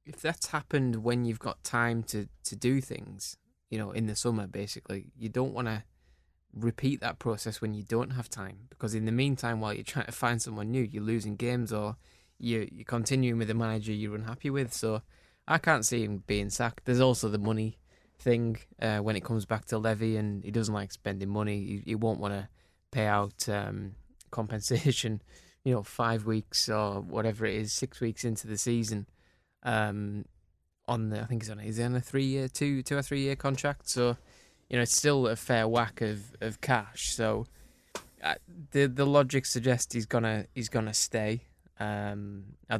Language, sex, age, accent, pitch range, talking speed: English, male, 20-39, British, 105-120 Hz, 195 wpm